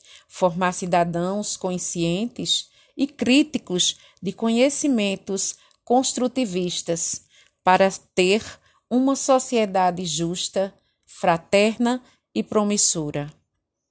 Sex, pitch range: female, 180-235 Hz